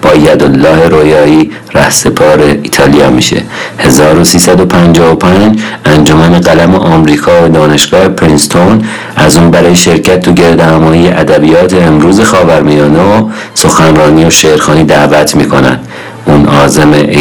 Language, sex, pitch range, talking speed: Persian, male, 75-90 Hz, 100 wpm